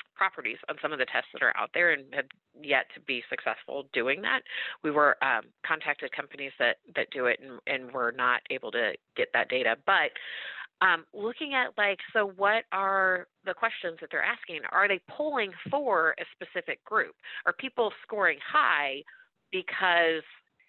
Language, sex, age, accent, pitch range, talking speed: English, female, 30-49, American, 150-230 Hz, 175 wpm